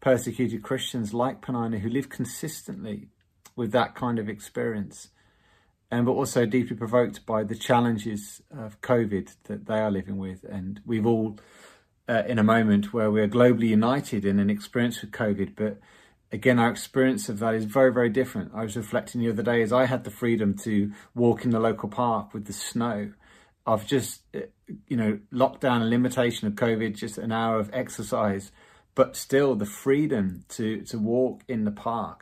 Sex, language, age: male, English, 30-49